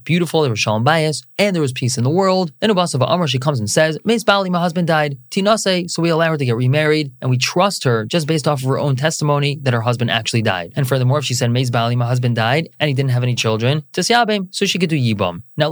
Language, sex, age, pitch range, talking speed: English, male, 20-39, 120-165 Hz, 265 wpm